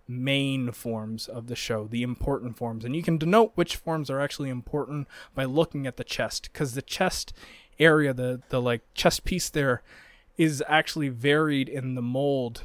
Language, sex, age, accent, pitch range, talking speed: English, male, 20-39, American, 125-160 Hz, 180 wpm